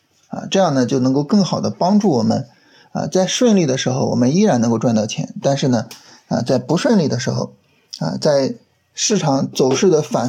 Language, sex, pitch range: Chinese, male, 135-215 Hz